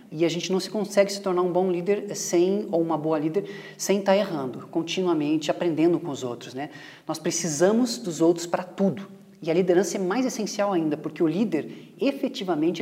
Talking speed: 195 wpm